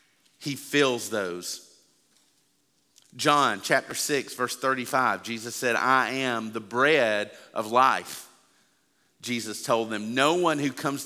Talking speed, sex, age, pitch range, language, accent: 125 wpm, male, 40-59, 110-135 Hz, English, American